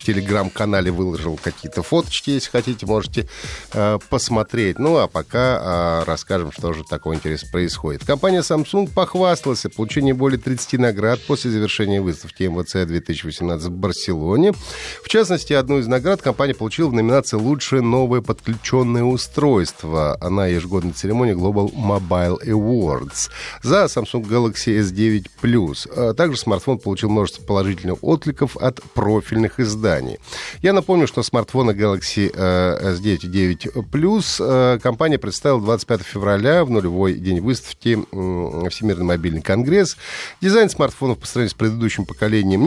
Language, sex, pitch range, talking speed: Russian, male, 95-130 Hz, 130 wpm